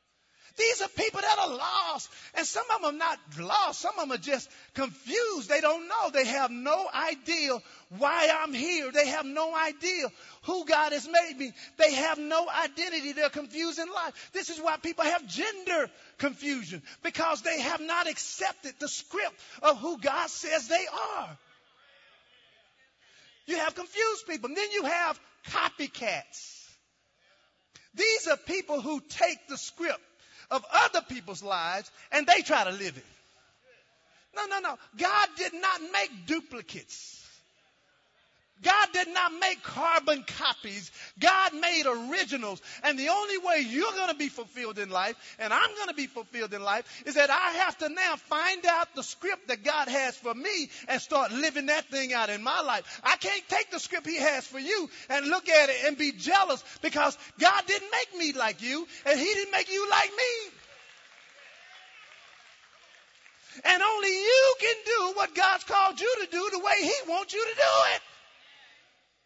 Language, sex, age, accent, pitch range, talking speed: English, male, 40-59, American, 280-370 Hz, 175 wpm